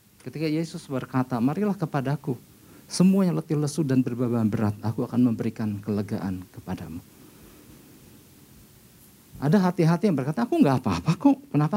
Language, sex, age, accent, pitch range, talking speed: Indonesian, male, 50-69, native, 125-165 Hz, 125 wpm